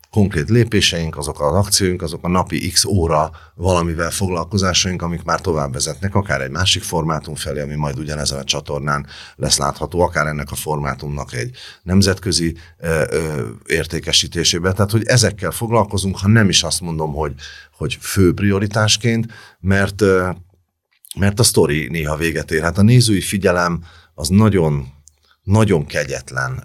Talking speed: 150 wpm